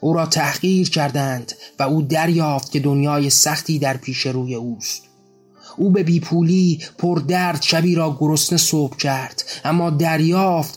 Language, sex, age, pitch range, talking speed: Persian, male, 30-49, 140-160 Hz, 140 wpm